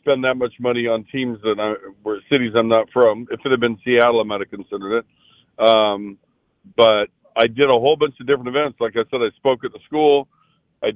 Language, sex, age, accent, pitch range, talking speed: English, male, 50-69, American, 110-130 Hz, 230 wpm